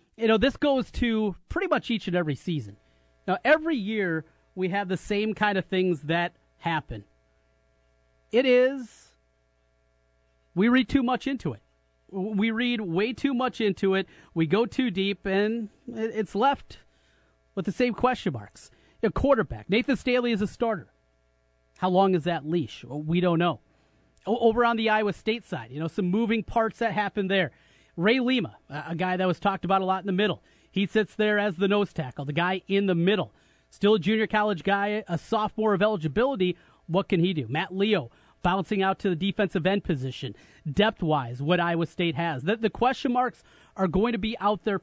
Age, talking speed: 30-49, 185 wpm